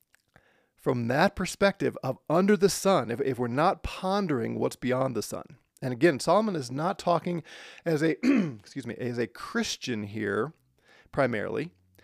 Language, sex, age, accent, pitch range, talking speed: English, male, 40-59, American, 120-165 Hz, 155 wpm